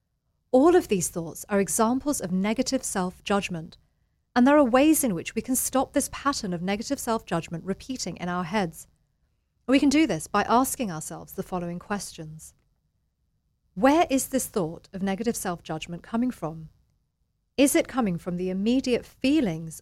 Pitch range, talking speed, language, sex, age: 170-245 Hz, 160 wpm, English, female, 40-59